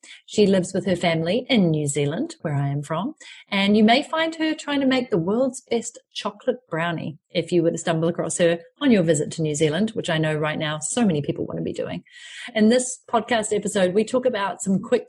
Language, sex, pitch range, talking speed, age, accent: English, female, 165-225 Hz, 235 wpm, 40-59, Australian